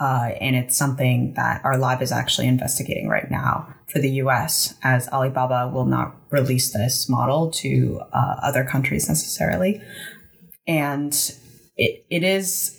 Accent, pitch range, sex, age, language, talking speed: American, 135-155 Hz, female, 20-39, English, 145 wpm